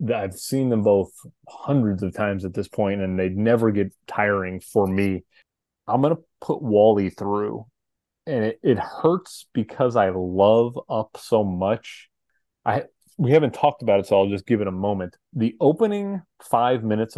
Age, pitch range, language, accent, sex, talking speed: 30-49, 95-120 Hz, English, American, male, 175 wpm